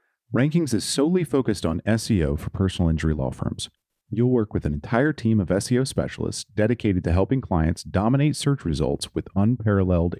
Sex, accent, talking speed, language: male, American, 170 wpm, English